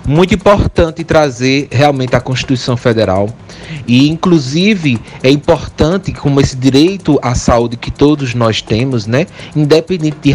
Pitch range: 125-175 Hz